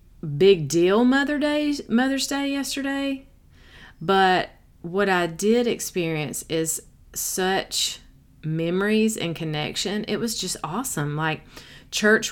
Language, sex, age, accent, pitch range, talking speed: English, female, 30-49, American, 155-200 Hz, 110 wpm